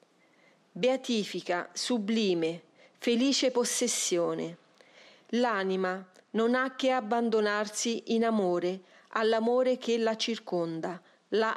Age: 40-59